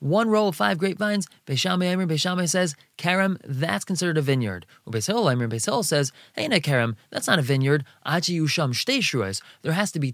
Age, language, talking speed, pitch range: 20-39, English, 155 wpm, 135-175 Hz